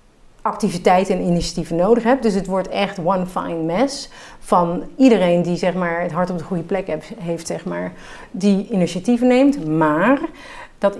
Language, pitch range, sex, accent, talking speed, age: Dutch, 170-215 Hz, female, Dutch, 155 wpm, 40-59